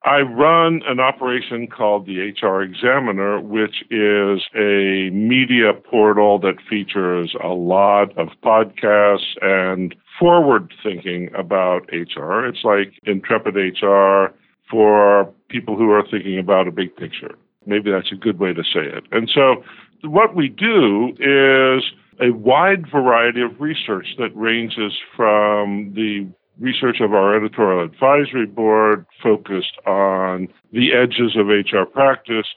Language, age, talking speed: English, 50-69, 135 wpm